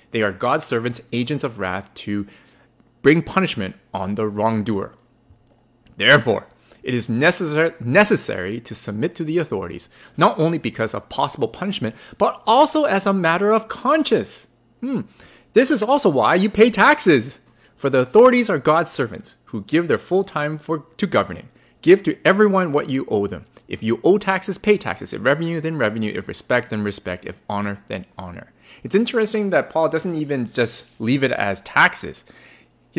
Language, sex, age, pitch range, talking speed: English, male, 30-49, 115-180 Hz, 175 wpm